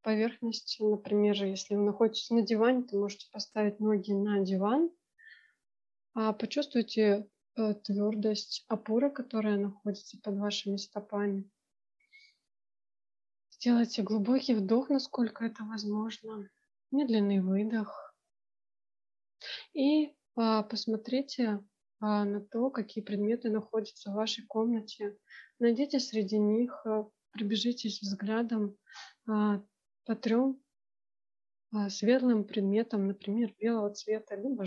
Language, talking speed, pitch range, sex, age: Russian, 90 wpm, 205-235 Hz, female, 20-39